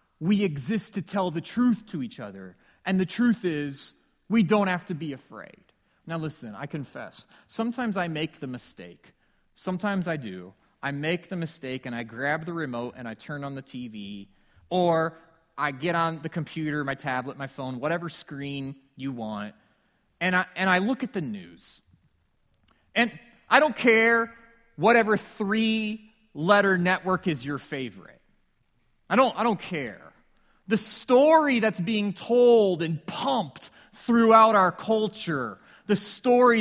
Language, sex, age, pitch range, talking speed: English, male, 30-49, 160-225 Hz, 155 wpm